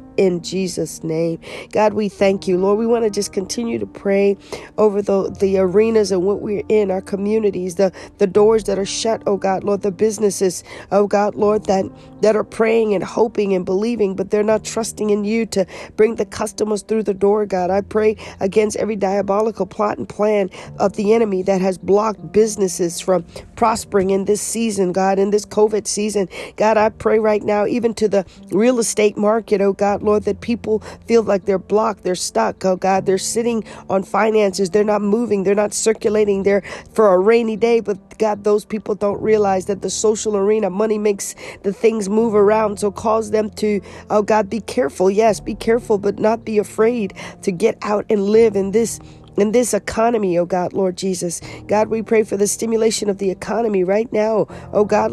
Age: 40-59